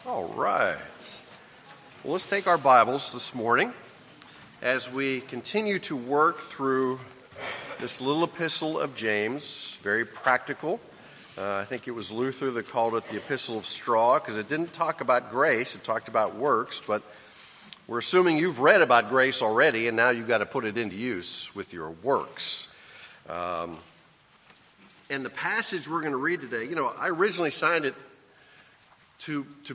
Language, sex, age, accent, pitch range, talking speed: English, male, 40-59, American, 110-150 Hz, 165 wpm